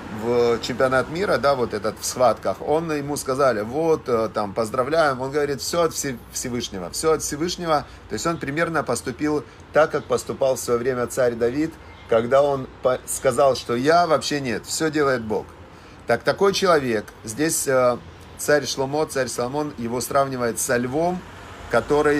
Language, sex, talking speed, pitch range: Russian, male, 155 wpm, 110-150 Hz